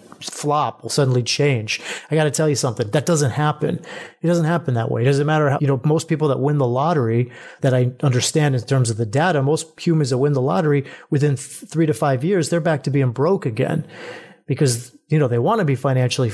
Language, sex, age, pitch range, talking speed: English, male, 30-49, 130-165 Hz, 225 wpm